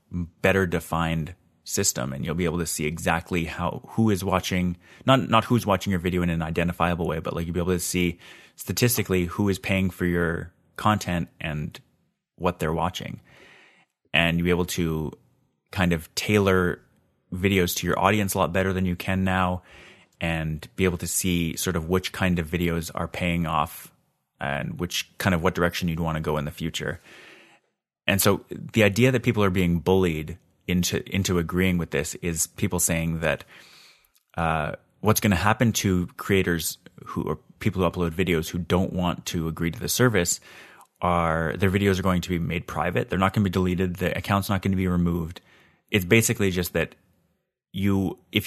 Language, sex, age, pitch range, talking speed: English, male, 30-49, 85-95 Hz, 190 wpm